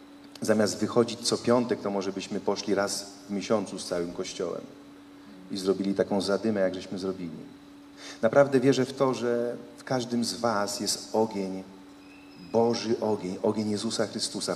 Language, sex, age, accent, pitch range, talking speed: Polish, male, 40-59, native, 100-135 Hz, 155 wpm